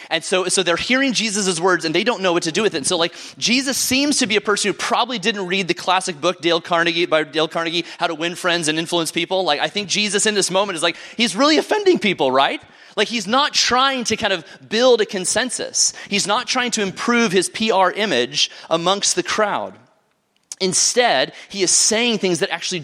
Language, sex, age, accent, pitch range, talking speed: English, male, 30-49, American, 170-225 Hz, 225 wpm